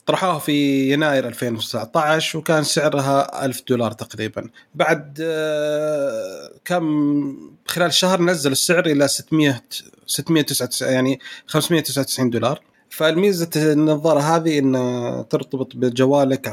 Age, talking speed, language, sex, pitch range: 30-49, 100 wpm, Arabic, male, 120-150 Hz